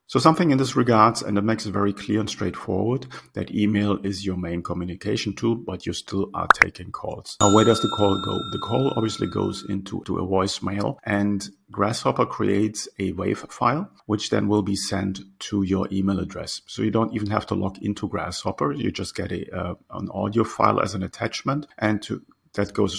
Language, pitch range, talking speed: English, 95-115 Hz, 205 wpm